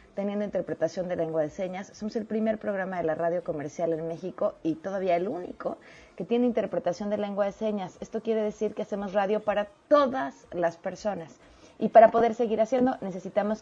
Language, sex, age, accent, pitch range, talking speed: Spanish, female, 30-49, Mexican, 180-235 Hz, 190 wpm